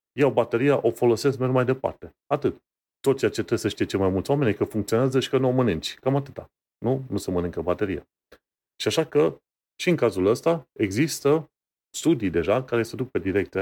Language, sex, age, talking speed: Romanian, male, 30-49, 205 wpm